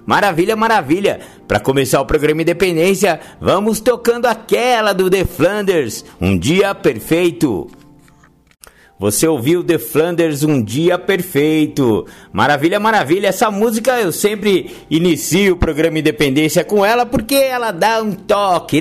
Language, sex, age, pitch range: Portuguese, male, 50-69, 160-210 Hz